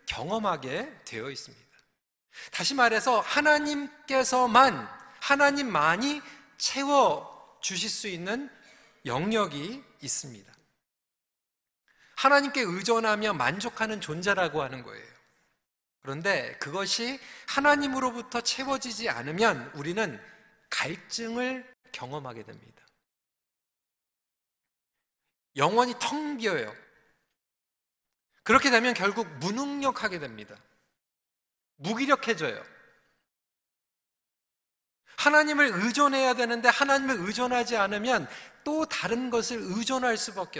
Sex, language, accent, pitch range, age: male, Korean, native, 190-270 Hz, 40-59